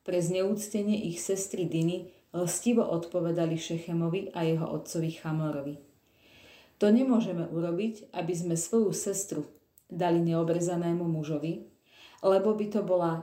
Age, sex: 30-49, female